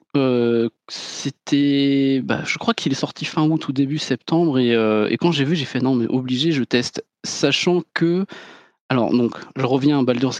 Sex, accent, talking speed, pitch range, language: male, French, 195 wpm, 125-165 Hz, French